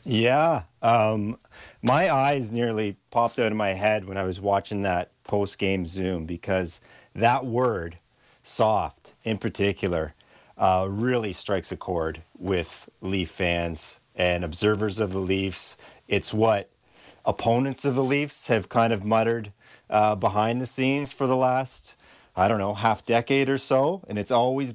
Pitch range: 95-120 Hz